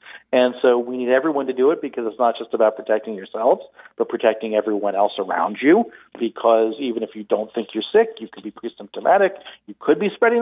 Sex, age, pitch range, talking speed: male, 40-59, 120-150 Hz, 215 wpm